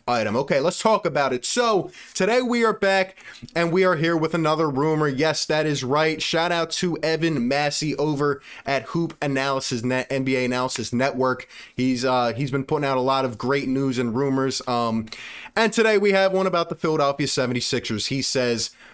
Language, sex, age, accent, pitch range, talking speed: English, male, 20-39, American, 130-160 Hz, 190 wpm